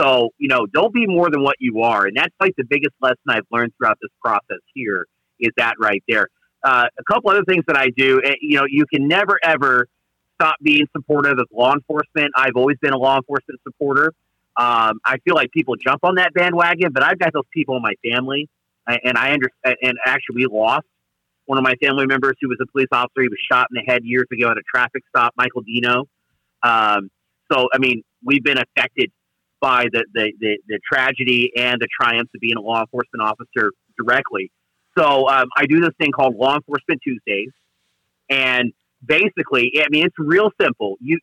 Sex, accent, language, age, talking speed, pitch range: male, American, English, 40-59, 210 wpm, 125-150 Hz